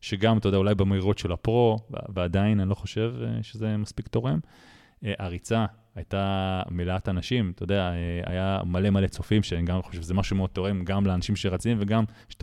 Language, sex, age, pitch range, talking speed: Hebrew, male, 30-49, 90-110 Hz, 175 wpm